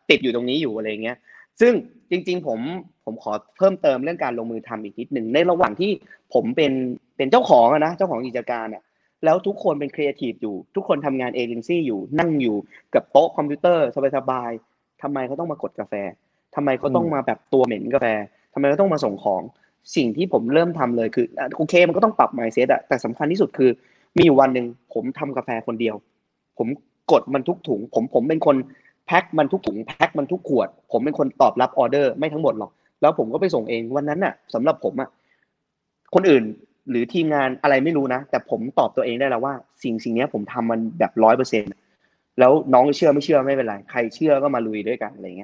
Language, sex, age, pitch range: Thai, male, 20-39, 115-160 Hz